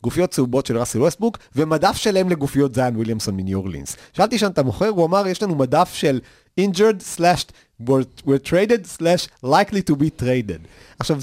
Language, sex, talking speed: Hebrew, male, 160 wpm